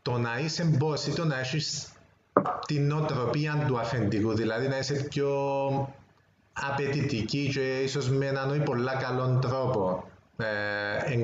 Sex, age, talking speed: male, 30-49, 135 wpm